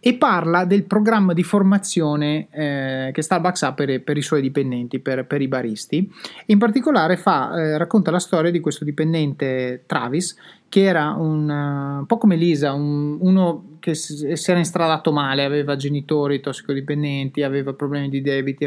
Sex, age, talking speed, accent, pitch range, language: male, 30-49, 170 wpm, native, 145-180 Hz, Italian